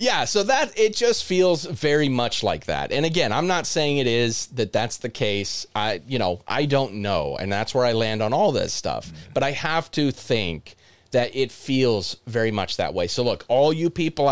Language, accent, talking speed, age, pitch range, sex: English, American, 220 wpm, 30-49, 110-150 Hz, male